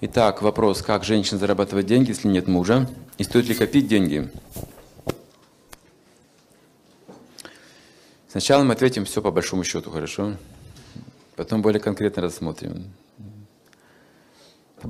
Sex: male